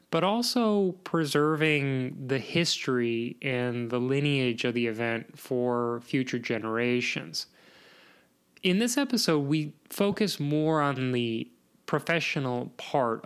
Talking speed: 110 wpm